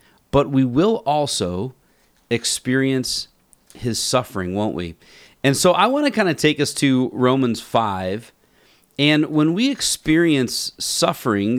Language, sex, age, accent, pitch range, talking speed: English, male, 40-59, American, 110-150 Hz, 135 wpm